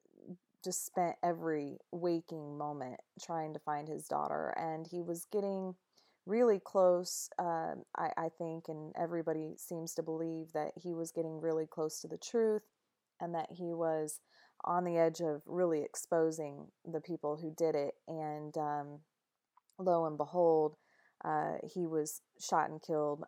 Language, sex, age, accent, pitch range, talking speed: English, female, 30-49, American, 155-175 Hz, 155 wpm